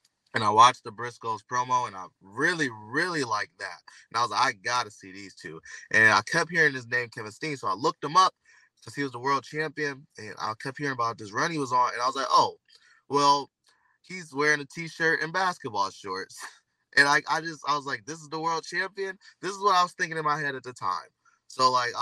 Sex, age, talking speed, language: male, 20-39, 245 wpm, English